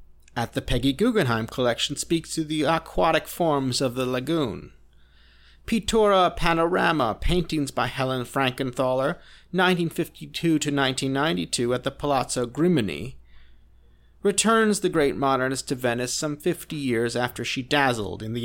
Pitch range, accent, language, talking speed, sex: 115-160 Hz, American, English, 145 wpm, male